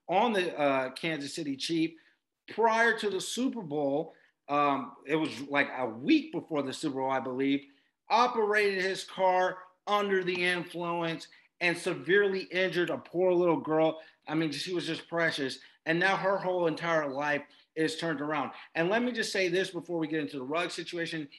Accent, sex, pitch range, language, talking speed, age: American, male, 160-195 Hz, English, 180 wpm, 40-59